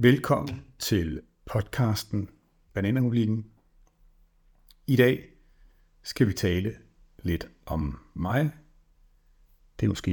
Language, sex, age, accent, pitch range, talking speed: Danish, male, 60-79, native, 85-120 Hz, 90 wpm